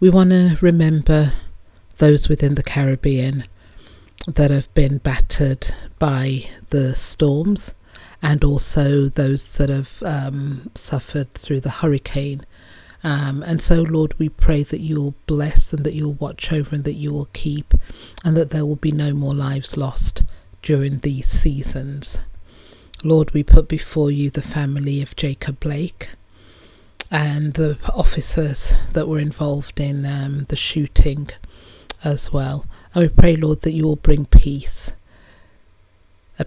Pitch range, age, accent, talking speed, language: 115-155 Hz, 40-59, British, 145 wpm, English